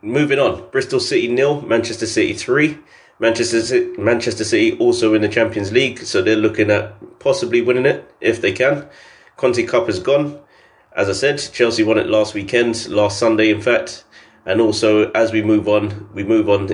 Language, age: English, 20-39